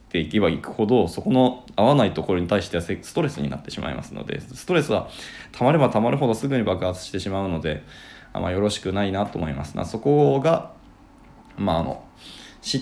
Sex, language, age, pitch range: male, Japanese, 20-39, 80-130 Hz